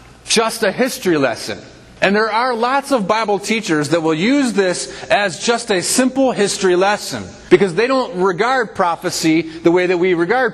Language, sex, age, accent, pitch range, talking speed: English, male, 30-49, American, 165-230 Hz, 175 wpm